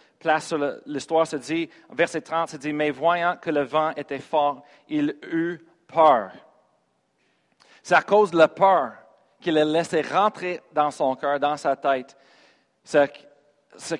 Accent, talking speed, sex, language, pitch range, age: Canadian, 165 wpm, male, French, 130-170 Hz, 40-59